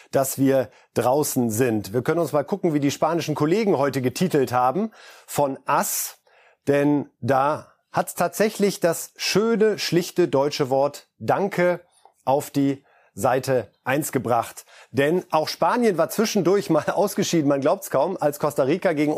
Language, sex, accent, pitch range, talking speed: German, male, German, 135-185 Hz, 155 wpm